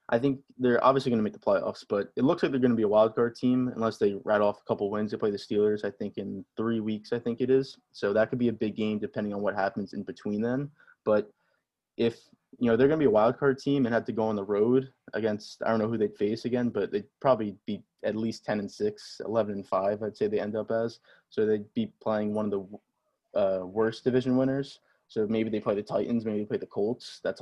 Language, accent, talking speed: English, American, 265 wpm